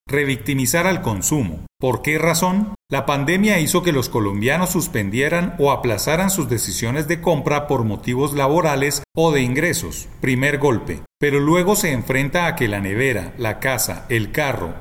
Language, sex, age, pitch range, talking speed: Spanish, male, 40-59, 120-160 Hz, 160 wpm